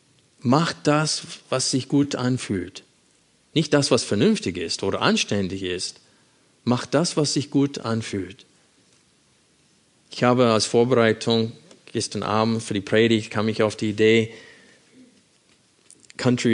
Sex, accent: male, German